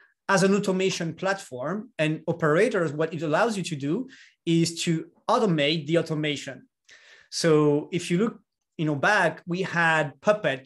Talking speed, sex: 150 wpm, male